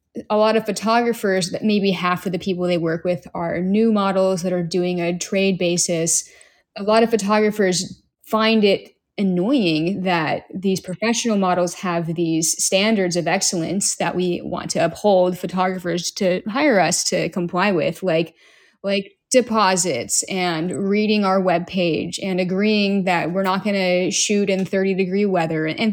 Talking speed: 165 wpm